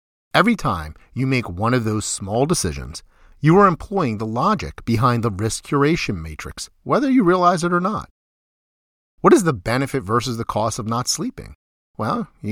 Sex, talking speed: male, 175 wpm